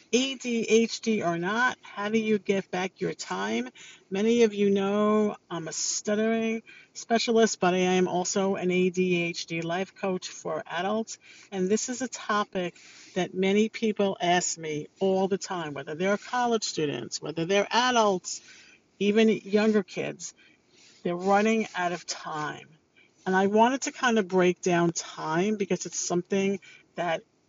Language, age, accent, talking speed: English, 50-69, American, 150 wpm